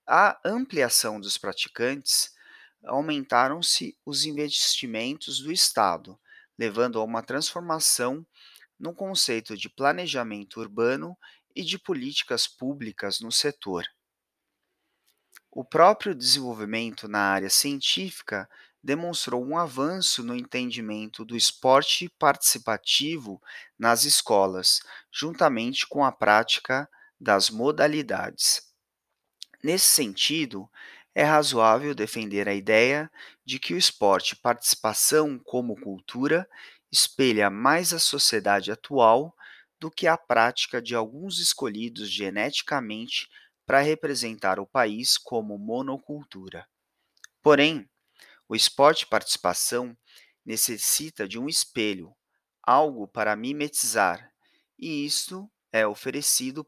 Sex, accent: male, Brazilian